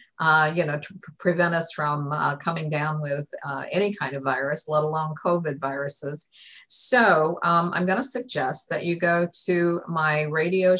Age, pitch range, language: 50-69, 155-185 Hz, English